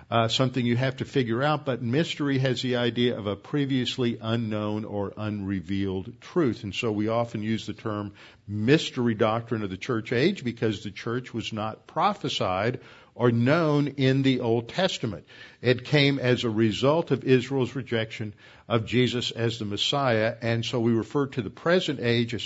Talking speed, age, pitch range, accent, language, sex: 175 wpm, 50-69, 115-140 Hz, American, English, male